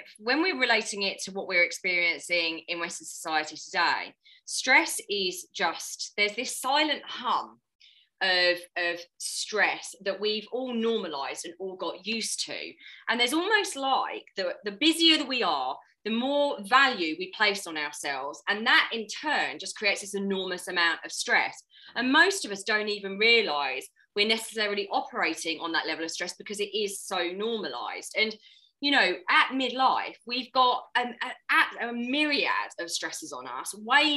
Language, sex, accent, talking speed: English, female, British, 165 wpm